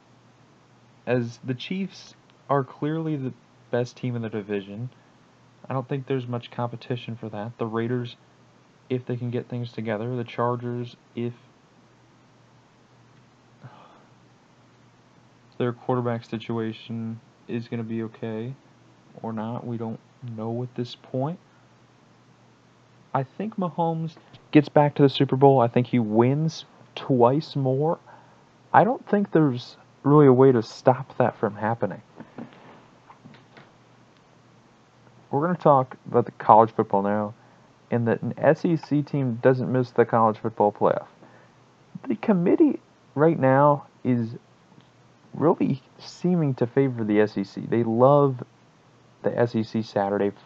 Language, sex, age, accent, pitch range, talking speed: English, male, 30-49, American, 115-135 Hz, 130 wpm